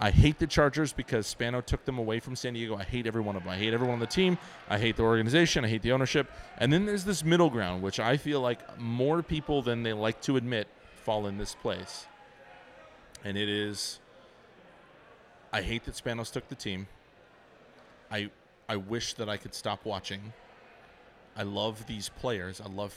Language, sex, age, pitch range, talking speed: English, male, 30-49, 105-135 Hz, 200 wpm